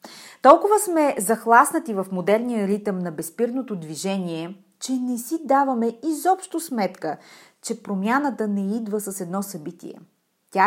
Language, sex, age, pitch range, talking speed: Bulgarian, female, 30-49, 185-270 Hz, 130 wpm